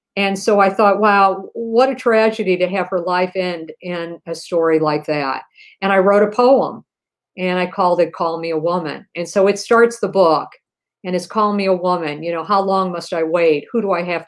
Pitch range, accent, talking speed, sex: 170-200 Hz, American, 225 wpm, female